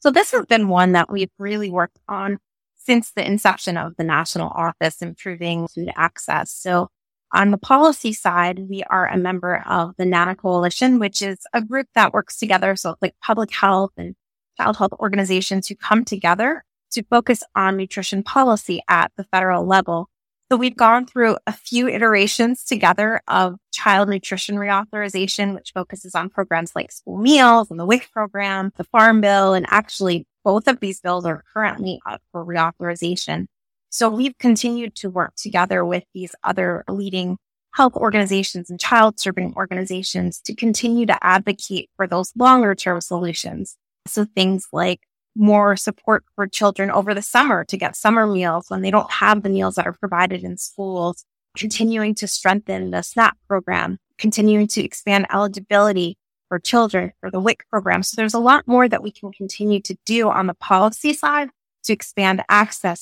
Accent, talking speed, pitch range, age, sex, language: American, 170 wpm, 185-215 Hz, 20-39, female, English